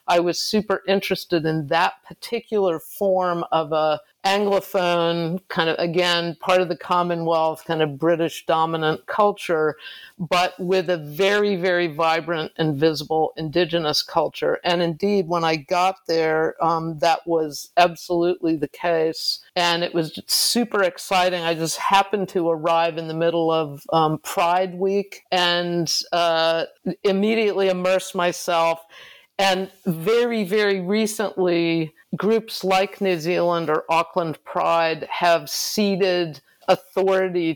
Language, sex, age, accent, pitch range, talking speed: English, female, 50-69, American, 160-190 Hz, 130 wpm